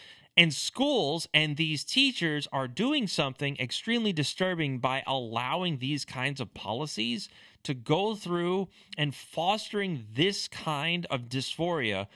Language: English